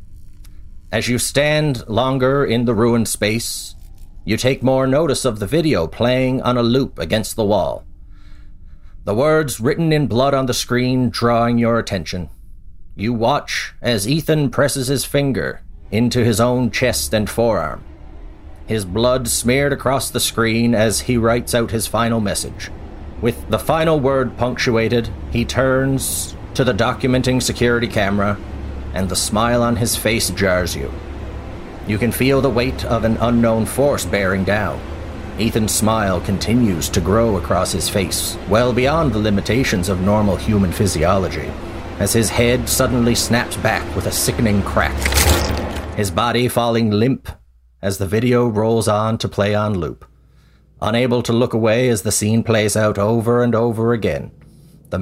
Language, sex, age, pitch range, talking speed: English, male, 40-59, 95-120 Hz, 155 wpm